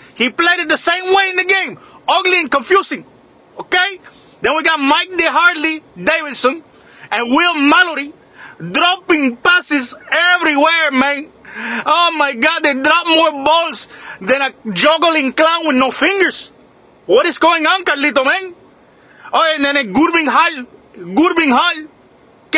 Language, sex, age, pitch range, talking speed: English, male, 30-49, 265-330 Hz, 145 wpm